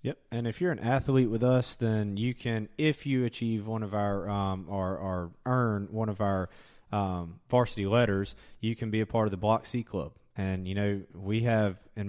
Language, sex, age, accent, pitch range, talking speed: English, male, 20-39, American, 95-110 Hz, 215 wpm